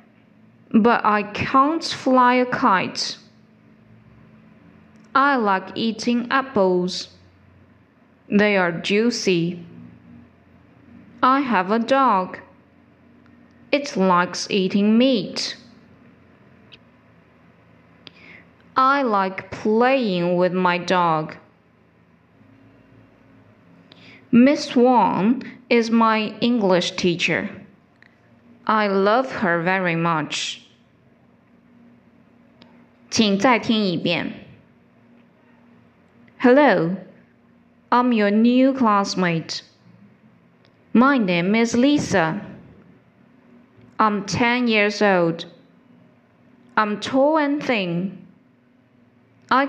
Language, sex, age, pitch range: Chinese, female, 20-39, 180-245 Hz